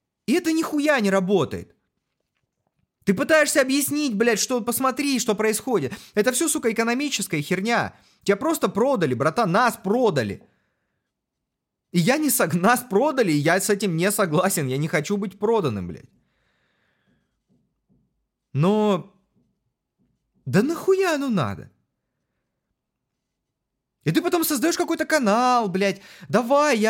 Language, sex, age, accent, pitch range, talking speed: Russian, male, 30-49, native, 215-285 Hz, 125 wpm